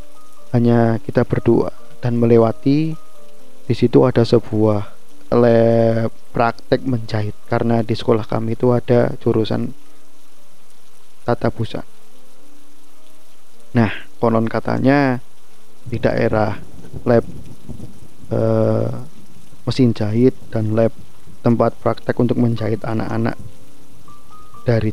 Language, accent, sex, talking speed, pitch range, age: Indonesian, native, male, 90 wpm, 115-130 Hz, 20-39